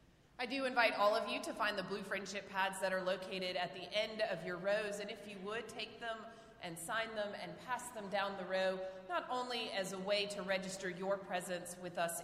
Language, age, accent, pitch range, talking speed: English, 30-49, American, 175-205 Hz, 230 wpm